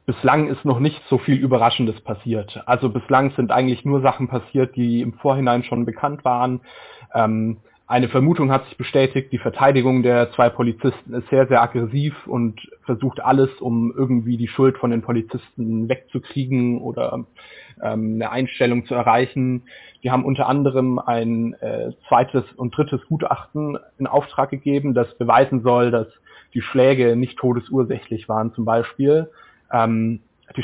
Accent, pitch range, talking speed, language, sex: German, 120-130 Hz, 155 wpm, German, male